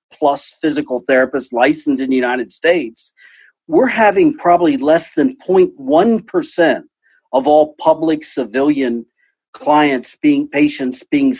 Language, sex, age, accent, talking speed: English, male, 40-59, American, 115 wpm